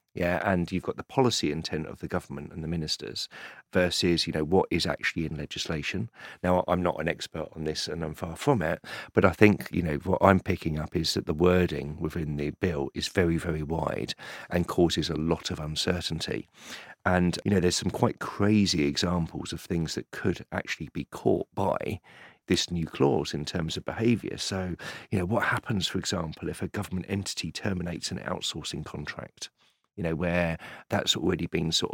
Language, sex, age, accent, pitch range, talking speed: English, male, 40-59, British, 80-95 Hz, 195 wpm